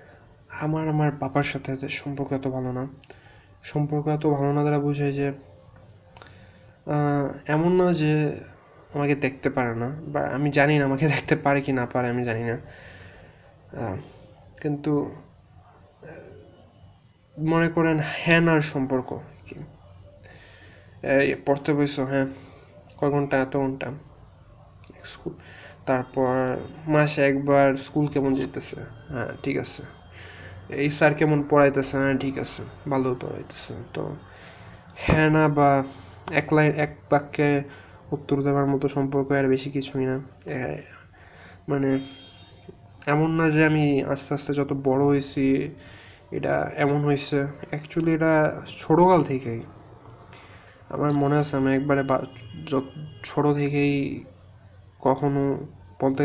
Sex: male